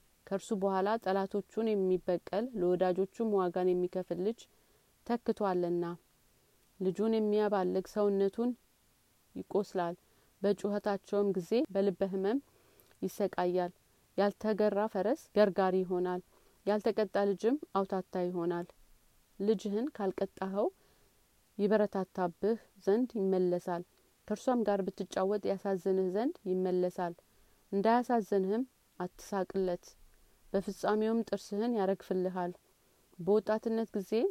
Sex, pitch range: female, 180-210 Hz